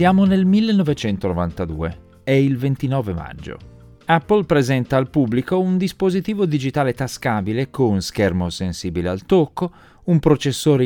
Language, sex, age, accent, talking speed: Italian, male, 40-59, native, 120 wpm